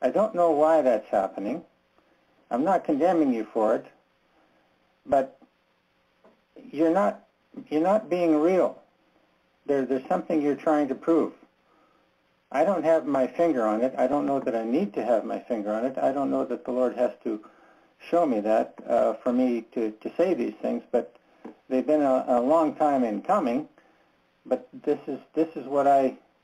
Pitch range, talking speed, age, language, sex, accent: 125-160 Hz, 175 wpm, 60-79, English, male, American